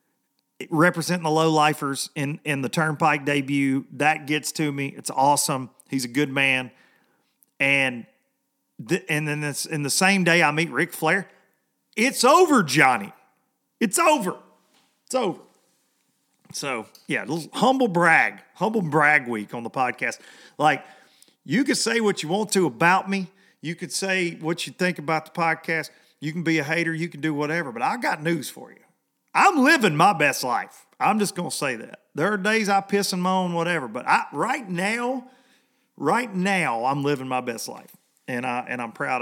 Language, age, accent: English, 40-59, American